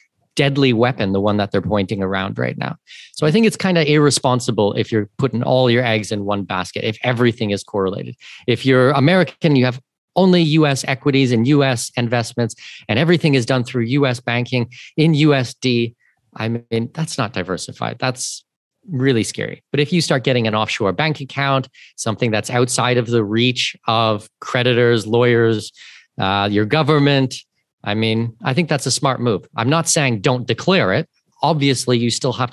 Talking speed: 180 wpm